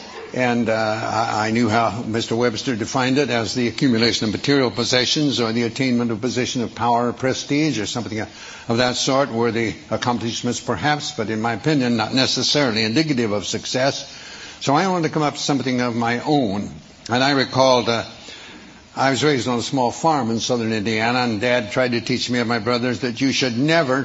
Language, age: English, 70-89